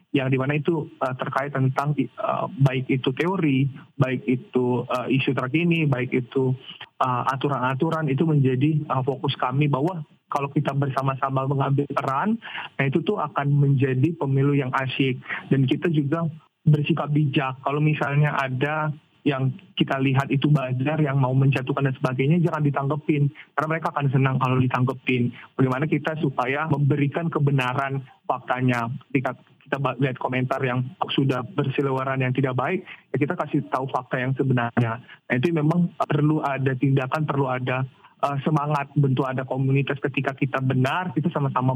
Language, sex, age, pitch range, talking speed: Indonesian, male, 20-39, 130-155 Hz, 150 wpm